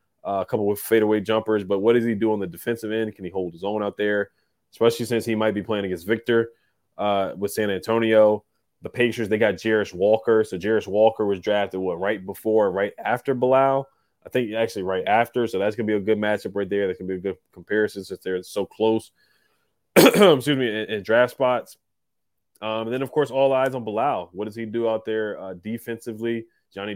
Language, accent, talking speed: English, American, 220 wpm